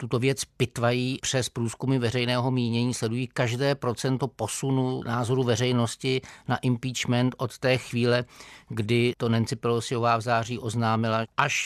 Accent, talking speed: native, 135 wpm